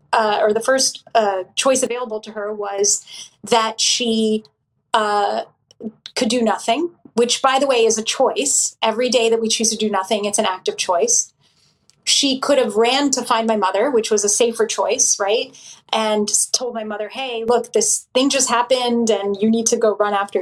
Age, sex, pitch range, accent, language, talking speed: 30-49, female, 210-245 Hz, American, English, 195 wpm